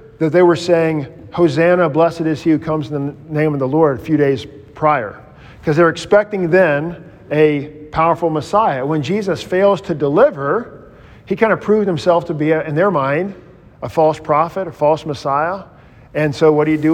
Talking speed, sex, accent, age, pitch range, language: 195 wpm, male, American, 50-69, 145-170 Hz, English